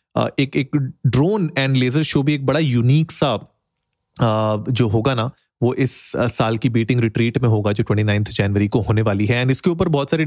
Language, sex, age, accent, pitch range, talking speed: Hindi, male, 30-49, native, 110-135 Hz, 220 wpm